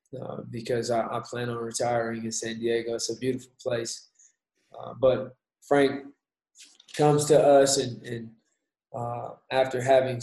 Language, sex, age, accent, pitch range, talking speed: English, male, 20-39, American, 115-130 Hz, 145 wpm